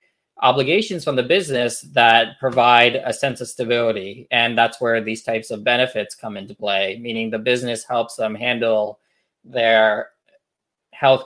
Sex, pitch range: male, 115-135 Hz